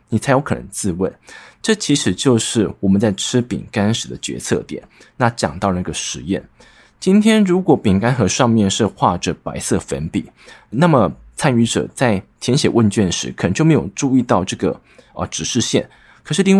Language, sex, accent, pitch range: Chinese, male, native, 100-145 Hz